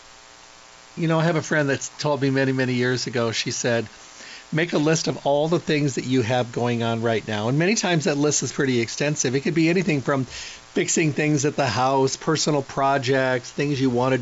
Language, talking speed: English, 225 wpm